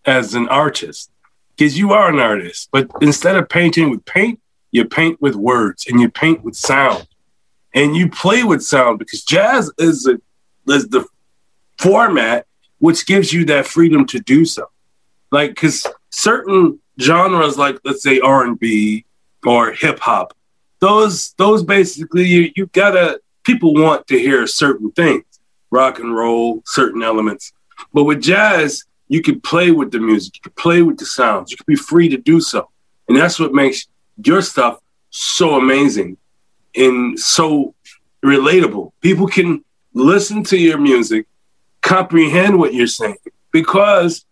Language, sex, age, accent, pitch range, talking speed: English, male, 40-59, American, 130-185 Hz, 155 wpm